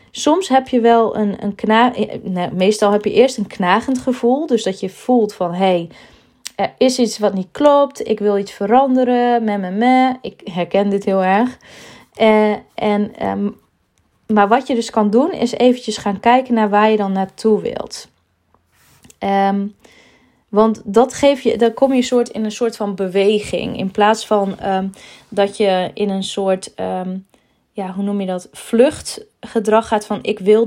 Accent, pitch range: Dutch, 200-240 Hz